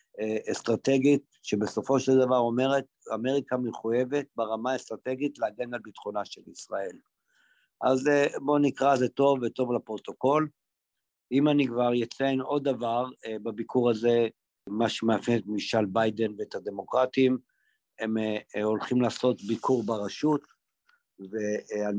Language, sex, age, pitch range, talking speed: Hebrew, male, 50-69, 115-135 Hz, 115 wpm